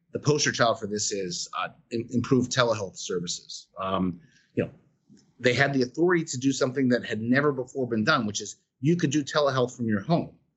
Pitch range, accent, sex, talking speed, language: 115-145 Hz, American, male, 200 wpm, English